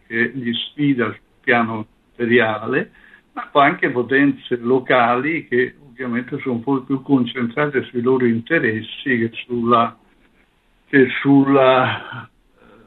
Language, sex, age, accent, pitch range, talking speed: Italian, male, 60-79, native, 115-135 Hz, 115 wpm